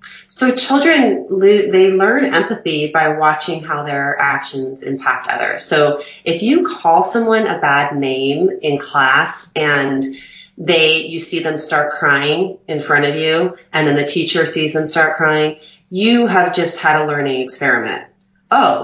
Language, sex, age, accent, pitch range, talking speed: English, female, 30-49, American, 140-170 Hz, 155 wpm